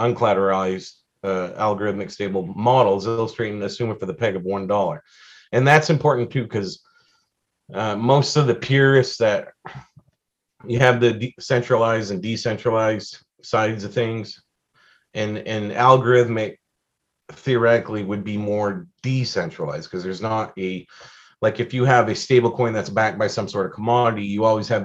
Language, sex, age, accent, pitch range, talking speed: English, male, 30-49, American, 95-120 Hz, 150 wpm